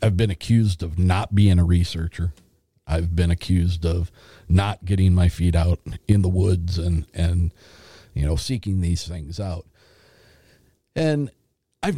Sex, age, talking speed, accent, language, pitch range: male, 50-69, 150 wpm, American, English, 85-105 Hz